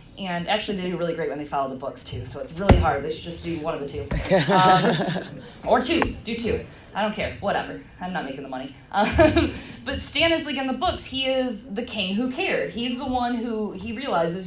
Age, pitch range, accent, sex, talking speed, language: 20-39, 155-210 Hz, American, female, 235 wpm, English